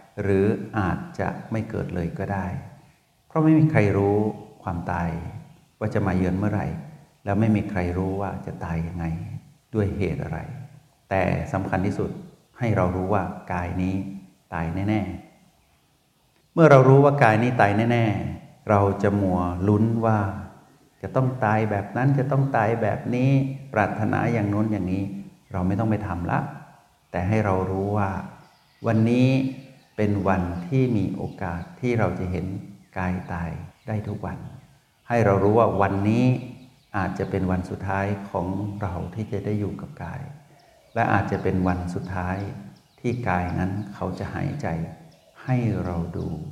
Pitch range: 95-120 Hz